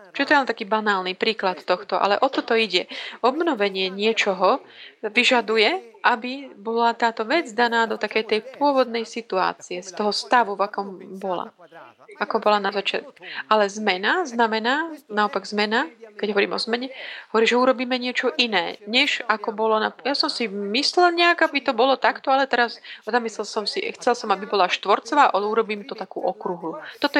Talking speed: 170 wpm